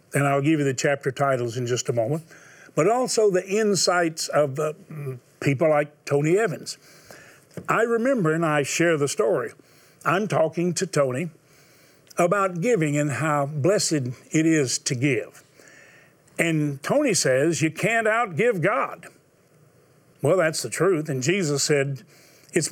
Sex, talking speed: male, 150 wpm